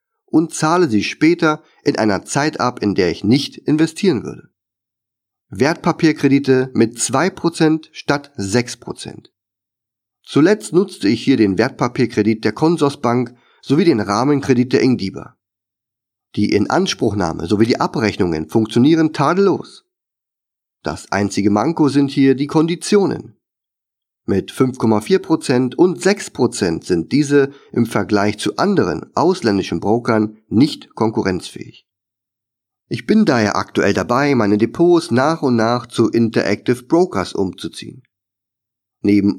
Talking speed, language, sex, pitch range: 115 wpm, German, male, 110-155 Hz